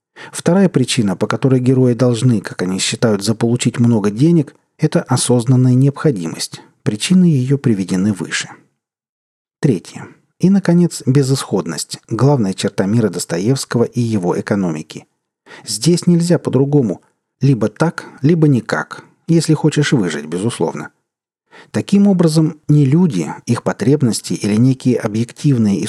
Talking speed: 120 wpm